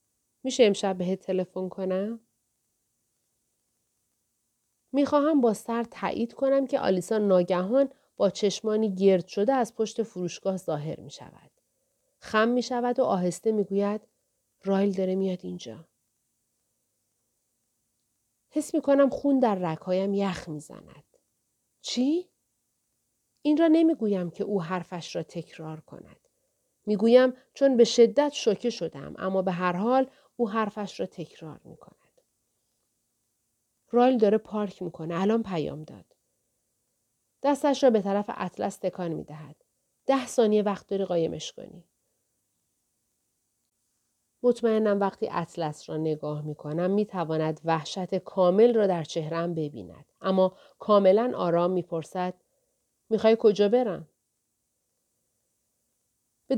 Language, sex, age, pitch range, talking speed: Persian, female, 40-59, 160-230 Hz, 120 wpm